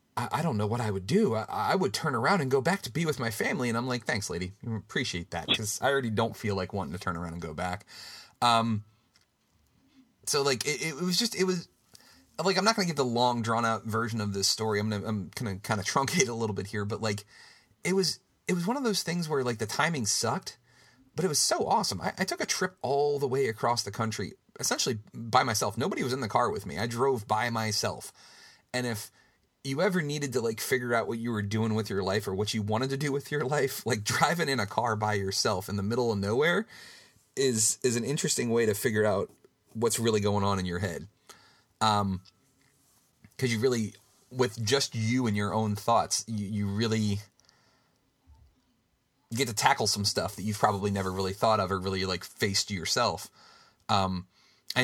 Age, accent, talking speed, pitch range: 30-49, American, 225 wpm, 105-130 Hz